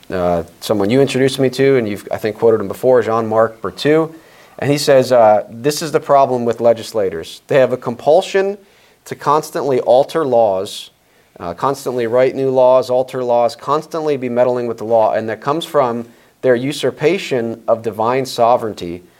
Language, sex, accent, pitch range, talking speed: English, male, American, 105-130 Hz, 170 wpm